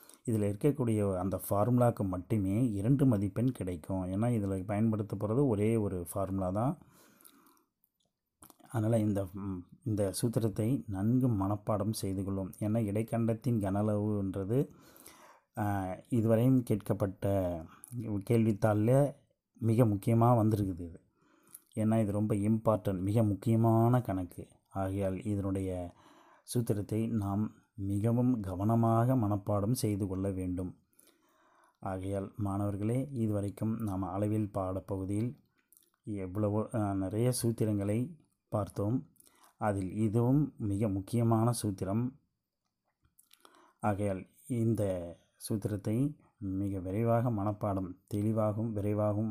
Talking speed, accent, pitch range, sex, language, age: 90 wpm, native, 95-115 Hz, male, Tamil, 30-49